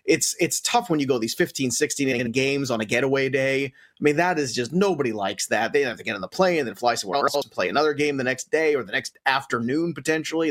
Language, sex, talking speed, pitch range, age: English, male, 270 wpm, 140-190 Hz, 30-49